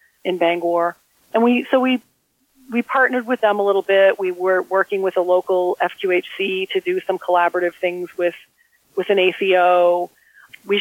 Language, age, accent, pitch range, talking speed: English, 40-59, American, 180-210 Hz, 165 wpm